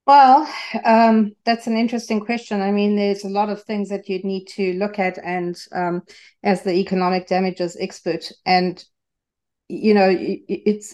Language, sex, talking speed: English, female, 165 wpm